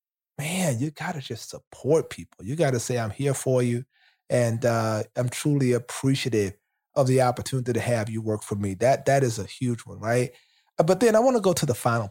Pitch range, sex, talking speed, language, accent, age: 115-140 Hz, male, 225 wpm, English, American, 30-49